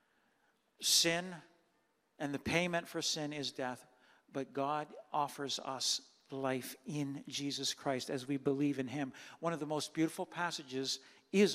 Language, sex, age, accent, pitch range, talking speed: English, male, 50-69, American, 150-180 Hz, 145 wpm